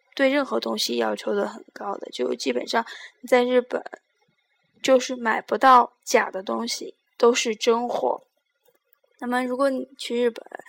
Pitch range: 230-275 Hz